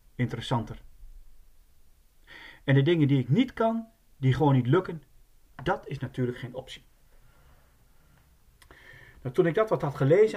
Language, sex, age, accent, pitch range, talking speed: Dutch, male, 40-59, Dutch, 115-155 Hz, 135 wpm